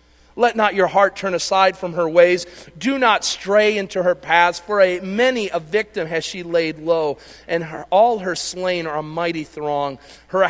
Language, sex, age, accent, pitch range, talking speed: English, male, 40-59, American, 120-175 Hz, 185 wpm